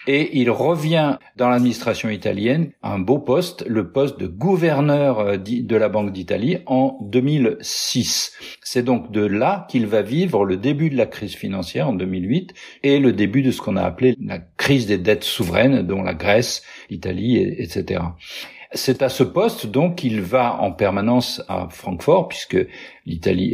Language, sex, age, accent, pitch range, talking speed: French, male, 50-69, French, 105-135 Hz, 165 wpm